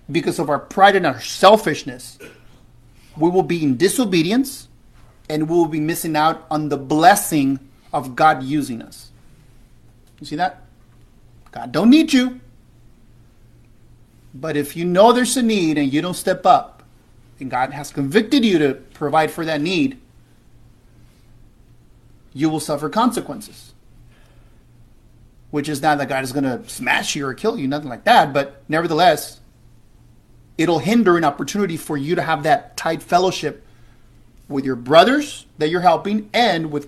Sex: male